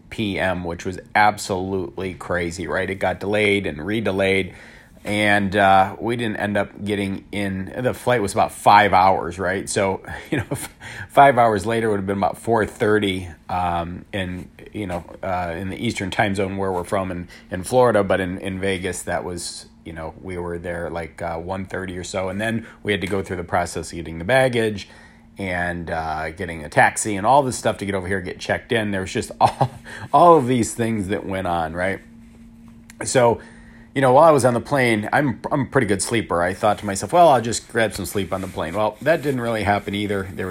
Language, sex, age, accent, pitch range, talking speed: English, male, 30-49, American, 90-110 Hz, 215 wpm